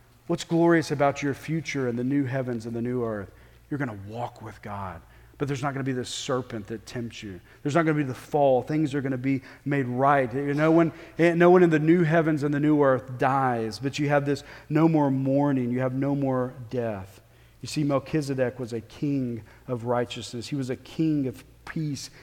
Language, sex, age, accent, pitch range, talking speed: English, male, 40-59, American, 125-170 Hz, 220 wpm